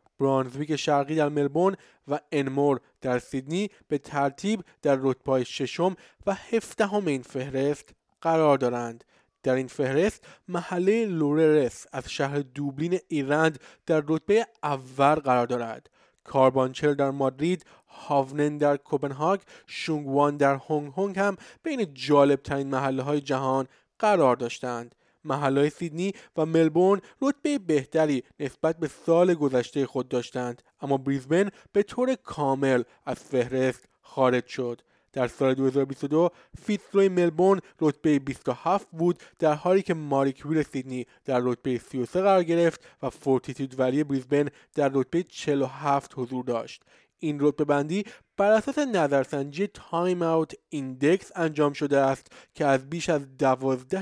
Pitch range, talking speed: 135-165 Hz, 130 wpm